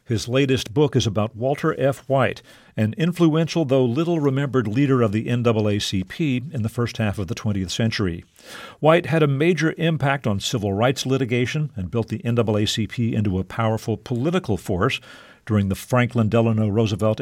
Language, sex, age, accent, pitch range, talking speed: English, male, 50-69, American, 110-135 Hz, 165 wpm